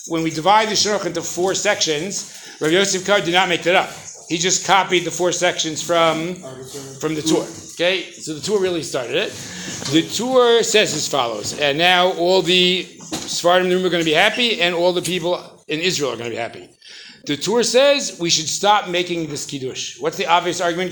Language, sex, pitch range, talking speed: English, male, 170-230 Hz, 215 wpm